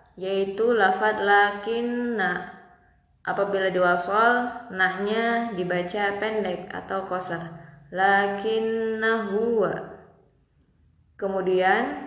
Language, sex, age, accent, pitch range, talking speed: Indonesian, female, 20-39, native, 185-230 Hz, 65 wpm